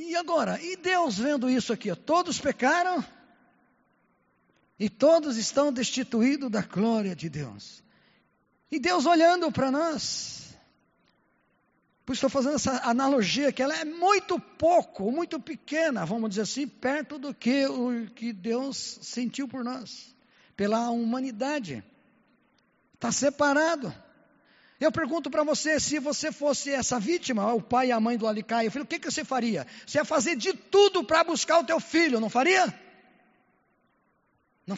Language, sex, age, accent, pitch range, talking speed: Portuguese, male, 50-69, Brazilian, 230-325 Hz, 145 wpm